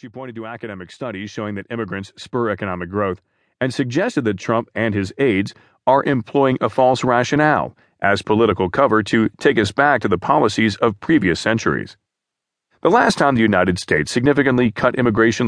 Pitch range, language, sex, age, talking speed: 100-130 Hz, English, male, 40-59, 175 wpm